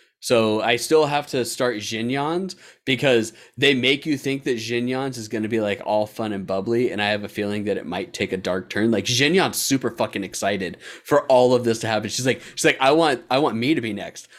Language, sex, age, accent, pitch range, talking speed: English, male, 30-49, American, 100-135 Hz, 240 wpm